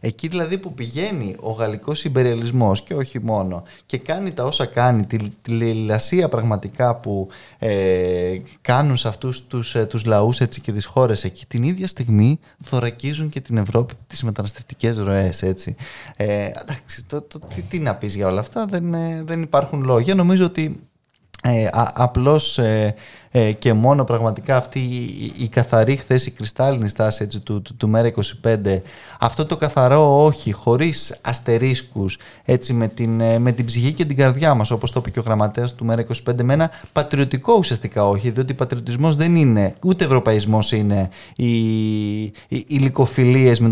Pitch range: 110-140 Hz